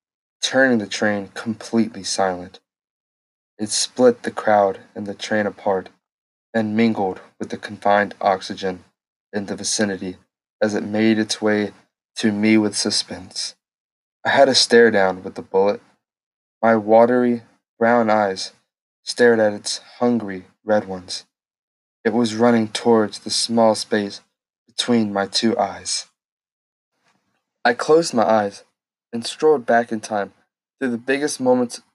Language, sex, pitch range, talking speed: English, male, 105-120 Hz, 135 wpm